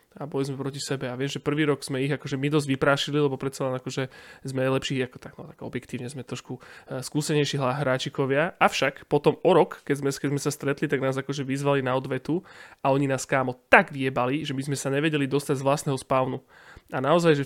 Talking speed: 225 wpm